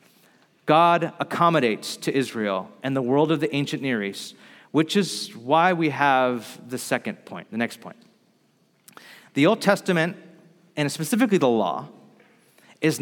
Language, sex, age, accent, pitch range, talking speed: English, male, 30-49, American, 145-195 Hz, 145 wpm